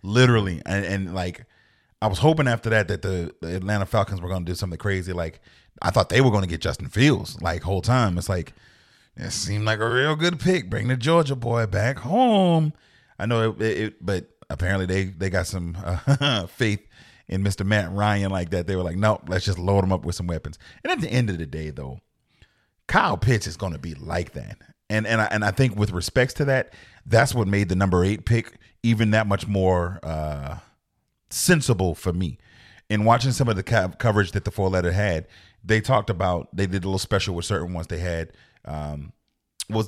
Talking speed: 220 wpm